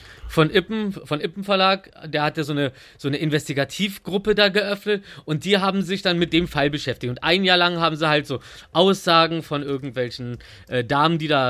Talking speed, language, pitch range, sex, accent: 200 wpm, German, 140-180 Hz, male, German